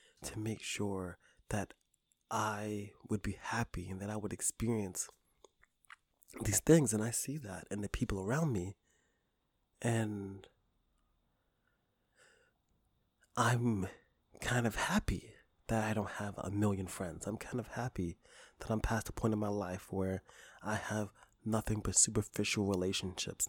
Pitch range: 95-115 Hz